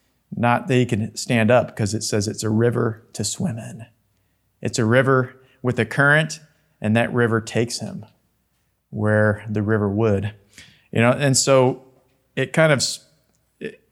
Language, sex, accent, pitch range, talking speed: English, male, American, 110-140 Hz, 165 wpm